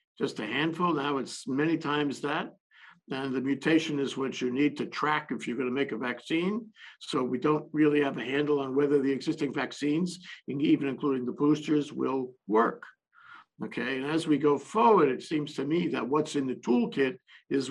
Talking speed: 195 wpm